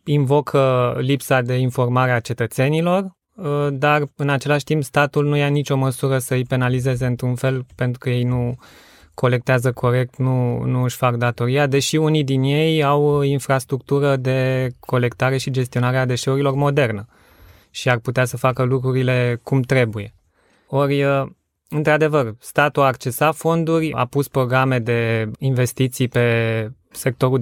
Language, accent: Romanian, native